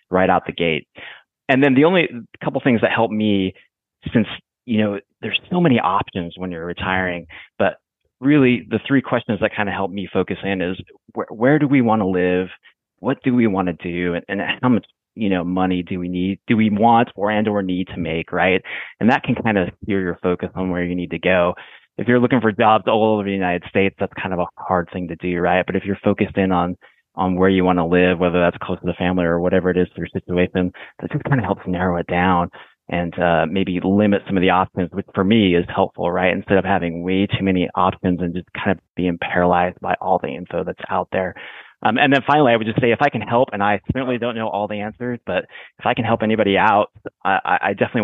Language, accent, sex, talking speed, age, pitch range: English, American, male, 250 wpm, 30-49, 90-110 Hz